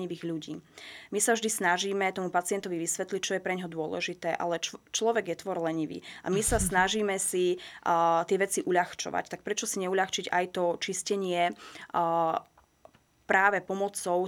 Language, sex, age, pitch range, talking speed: Slovak, female, 20-39, 175-205 Hz, 155 wpm